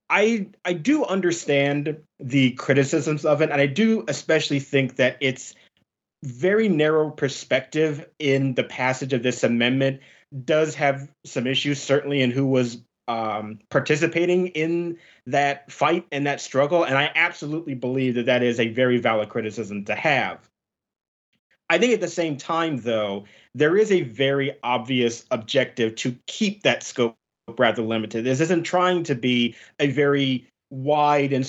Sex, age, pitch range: male, 30-49, 125-160 Hz